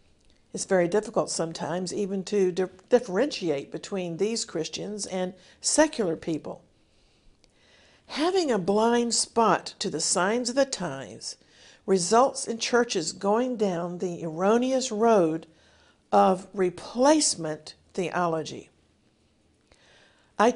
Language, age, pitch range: English, 50-69, 180-230 Hz